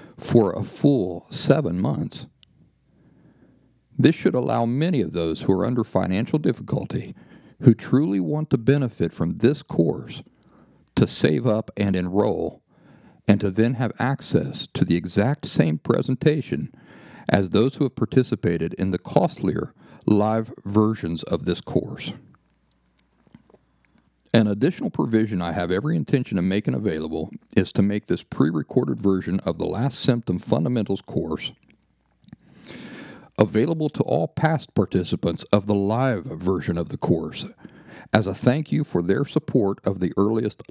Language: English